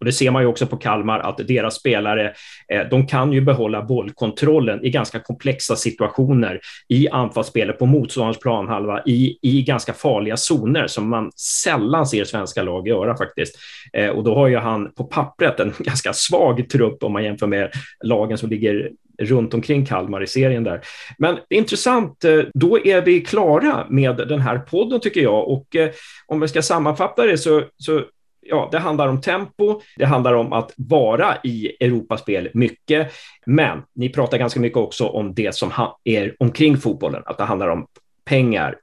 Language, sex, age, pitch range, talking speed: Swedish, male, 30-49, 105-145 Hz, 170 wpm